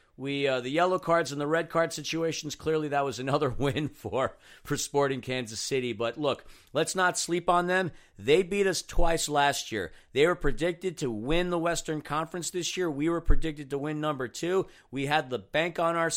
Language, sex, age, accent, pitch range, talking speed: English, male, 40-59, American, 135-175 Hz, 210 wpm